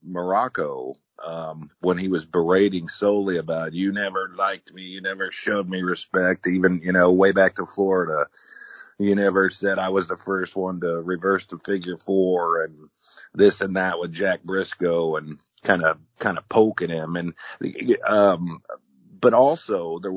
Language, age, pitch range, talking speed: English, 40-59, 80-95 Hz, 165 wpm